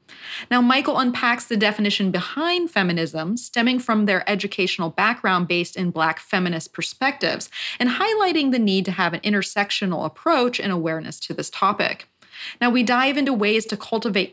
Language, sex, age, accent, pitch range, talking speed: English, female, 30-49, American, 185-270 Hz, 160 wpm